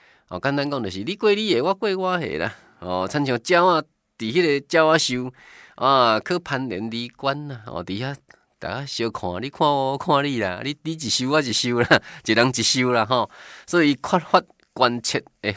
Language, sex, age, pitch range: Chinese, male, 20-39, 95-140 Hz